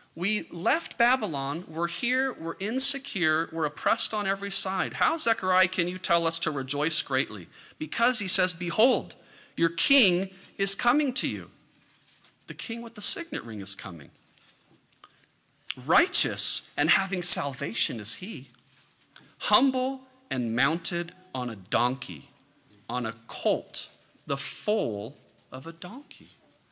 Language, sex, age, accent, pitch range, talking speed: English, male, 40-59, American, 145-230 Hz, 135 wpm